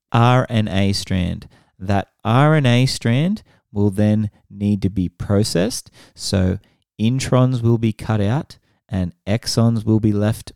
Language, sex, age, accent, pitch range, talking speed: English, male, 30-49, Australian, 95-120 Hz, 125 wpm